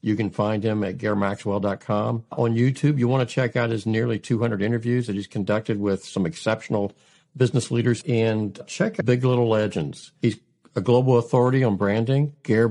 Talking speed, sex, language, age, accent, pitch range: 180 wpm, male, English, 60-79, American, 100-120 Hz